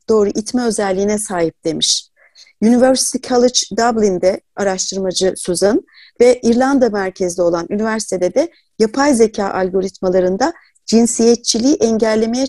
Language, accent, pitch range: Turkish, native, 195-245 Hz